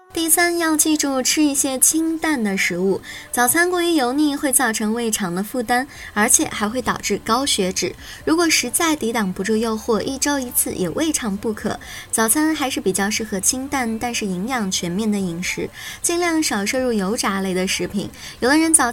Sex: male